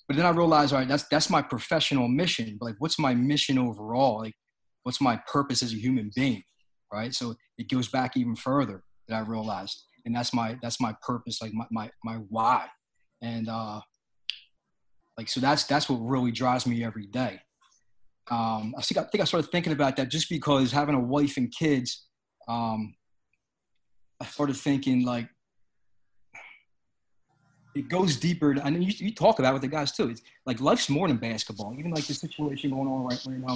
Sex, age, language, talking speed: male, 20-39, English, 190 wpm